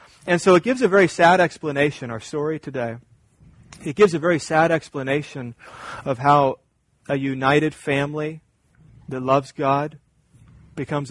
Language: English